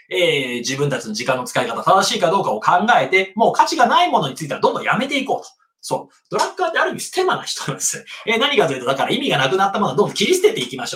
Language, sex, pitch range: Japanese, male, 195-325 Hz